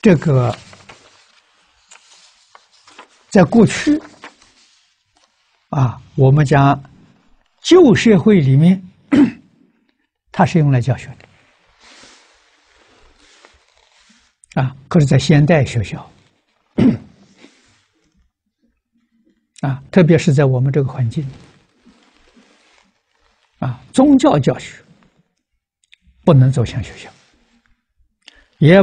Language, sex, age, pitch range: Chinese, male, 60-79, 125-185 Hz